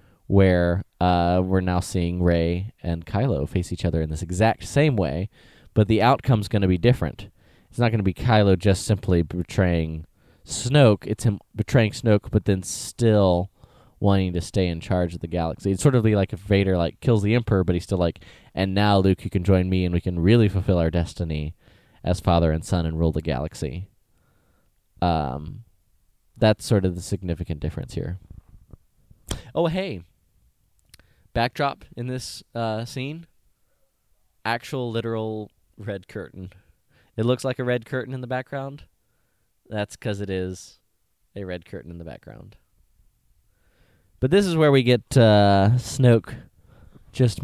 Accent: American